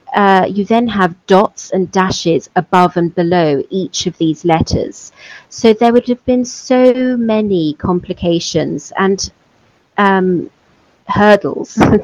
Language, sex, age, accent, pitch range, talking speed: English, female, 40-59, British, 175-220 Hz, 125 wpm